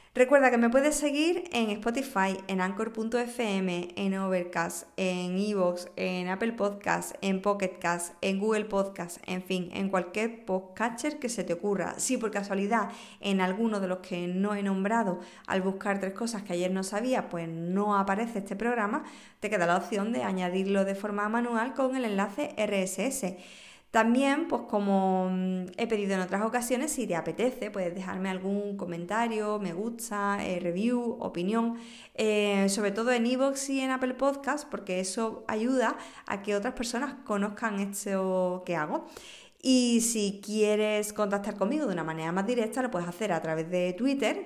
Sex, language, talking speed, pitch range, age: female, Spanish, 165 wpm, 185-230 Hz, 20-39